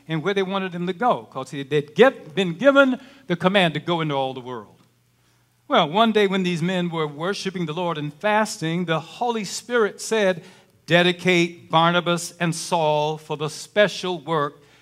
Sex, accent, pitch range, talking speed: male, American, 145-200 Hz, 180 wpm